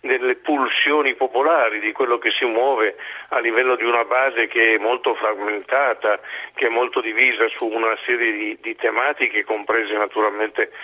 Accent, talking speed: native, 160 wpm